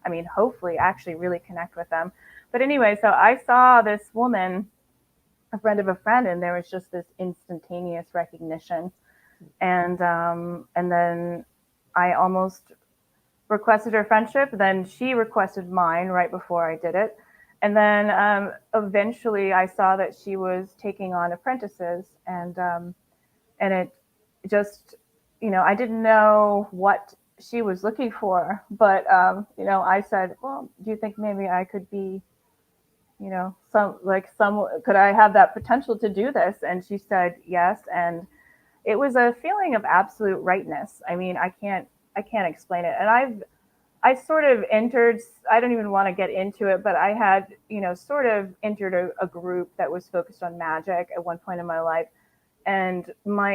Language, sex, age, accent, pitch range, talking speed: English, female, 30-49, American, 175-215 Hz, 175 wpm